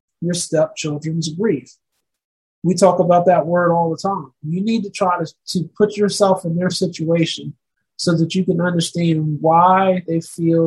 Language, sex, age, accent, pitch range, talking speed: English, male, 30-49, American, 160-185 Hz, 170 wpm